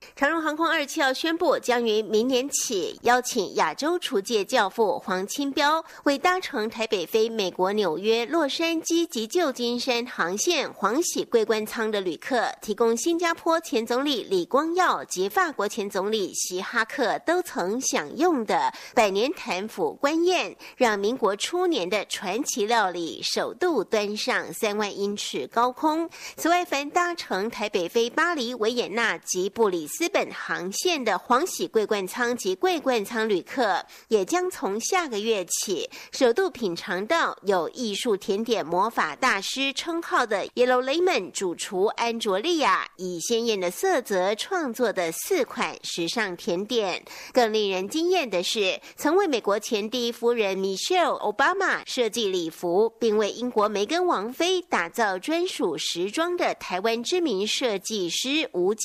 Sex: female